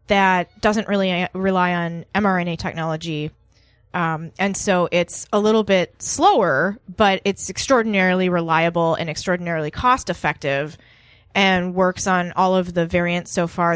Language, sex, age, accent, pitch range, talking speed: English, female, 20-39, American, 170-200 Hz, 135 wpm